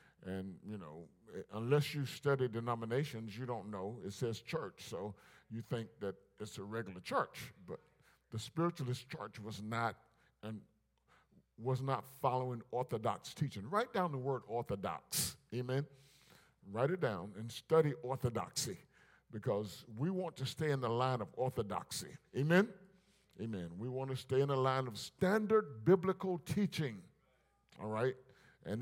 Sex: male